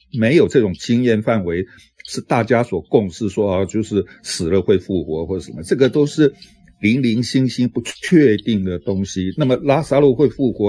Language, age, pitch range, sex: Chinese, 60-79, 100-125 Hz, male